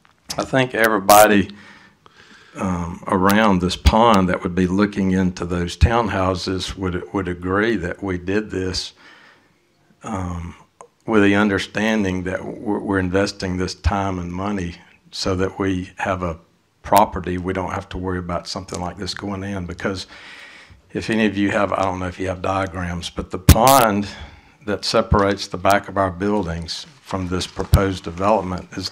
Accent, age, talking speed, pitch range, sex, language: American, 60-79, 160 wpm, 90-105 Hz, male, English